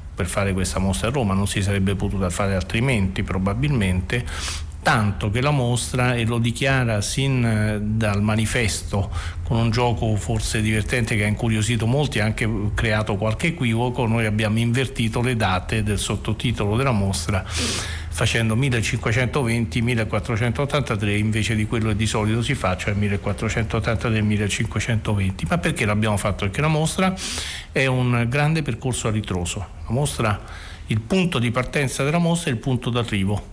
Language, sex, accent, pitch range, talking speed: Italian, male, native, 105-130 Hz, 145 wpm